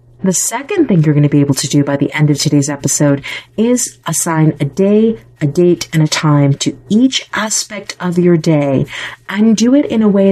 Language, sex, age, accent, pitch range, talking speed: English, female, 30-49, American, 145-190 Hz, 215 wpm